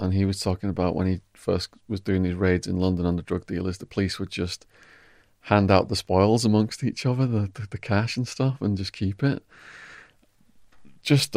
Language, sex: English, male